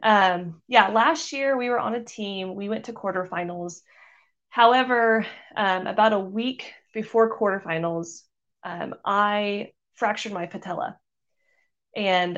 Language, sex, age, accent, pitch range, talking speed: English, female, 20-39, American, 175-225 Hz, 125 wpm